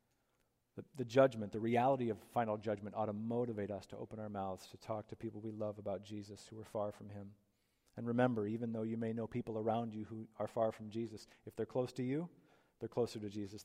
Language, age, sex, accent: English, 40-59, male, American